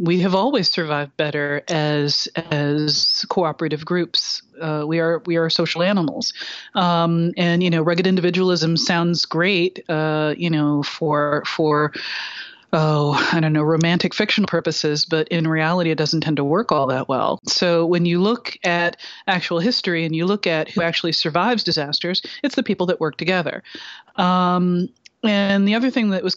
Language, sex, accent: English, female, American